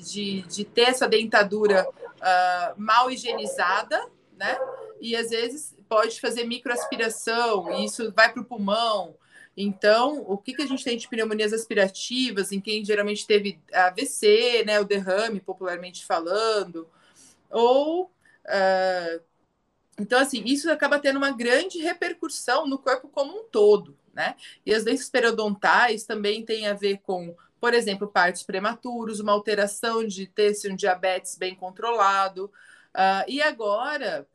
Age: 30-49